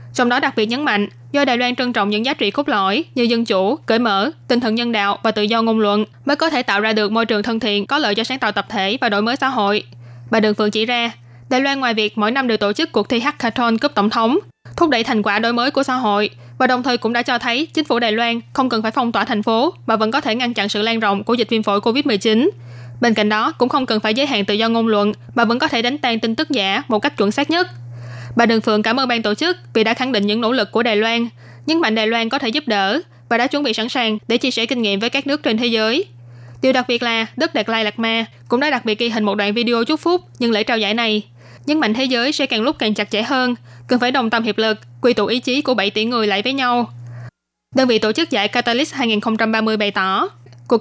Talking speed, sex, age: 290 wpm, female, 20-39